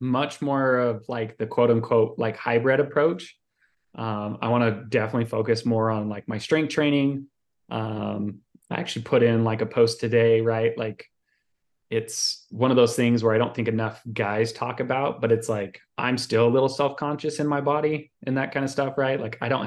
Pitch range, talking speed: 110-125 Hz, 200 wpm